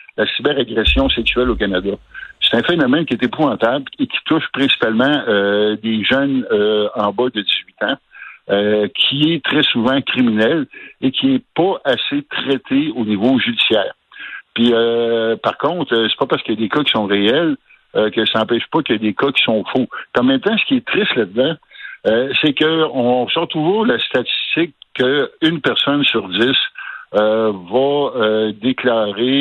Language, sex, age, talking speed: French, male, 60-79, 185 wpm